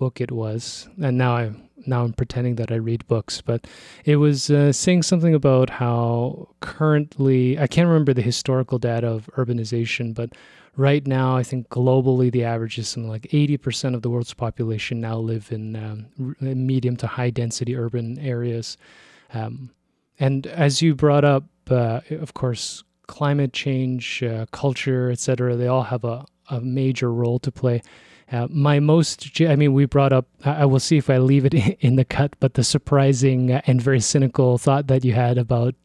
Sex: male